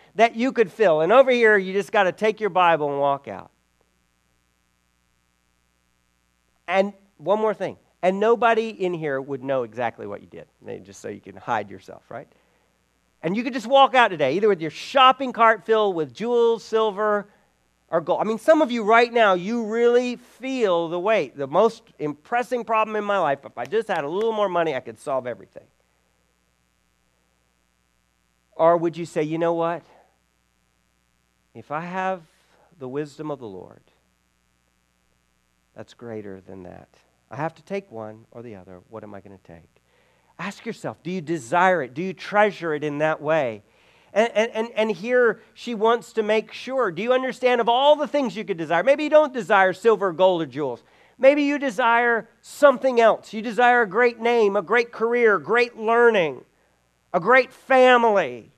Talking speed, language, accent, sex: 180 wpm, English, American, male